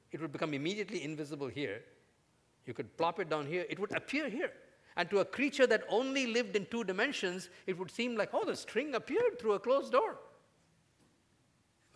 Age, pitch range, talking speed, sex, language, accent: 50-69, 145-215 Hz, 195 wpm, male, English, Indian